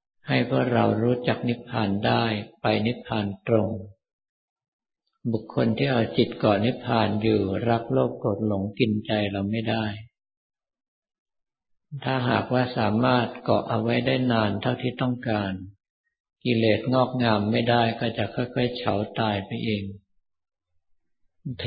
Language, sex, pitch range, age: Thai, male, 105-125 Hz, 50-69